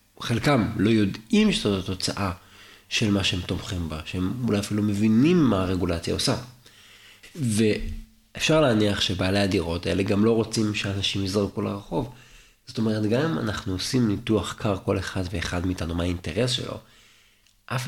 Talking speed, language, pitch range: 150 wpm, Hebrew, 95-115 Hz